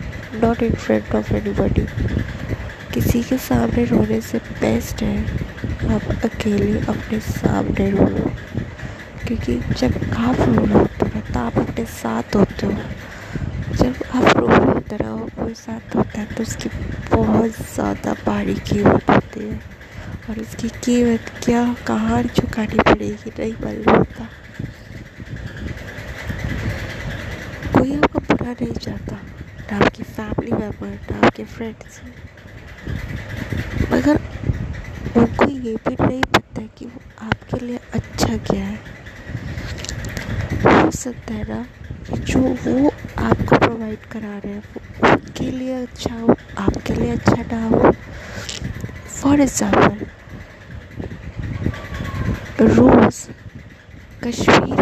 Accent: native